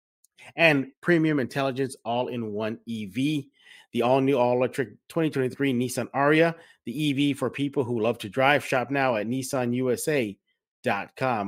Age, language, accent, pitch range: 30-49, English, American, 110-140 Hz